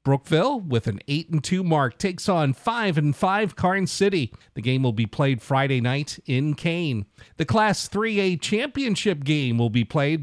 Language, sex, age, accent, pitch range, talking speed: English, male, 50-69, American, 125-175 Hz, 170 wpm